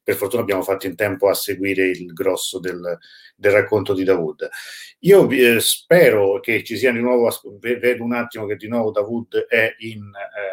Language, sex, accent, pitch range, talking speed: Italian, male, native, 95-125 Hz, 195 wpm